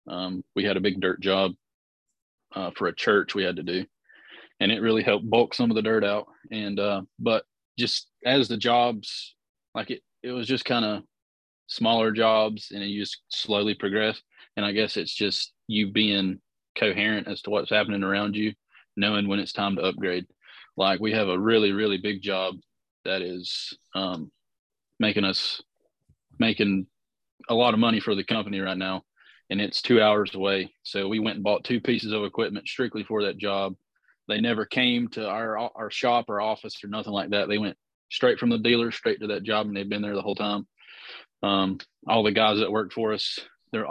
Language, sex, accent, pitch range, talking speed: English, male, American, 95-110 Hz, 200 wpm